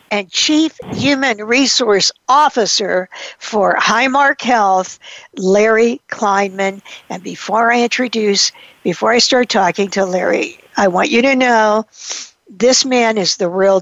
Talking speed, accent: 130 wpm, American